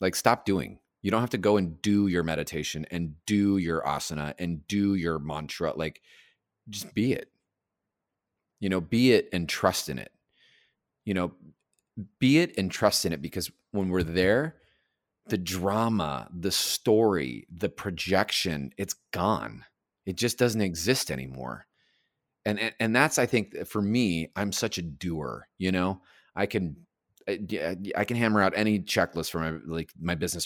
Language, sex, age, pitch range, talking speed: English, male, 30-49, 85-110 Hz, 165 wpm